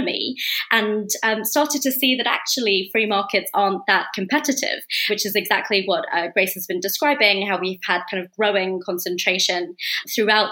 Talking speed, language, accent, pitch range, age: 170 wpm, English, British, 185-215 Hz, 20-39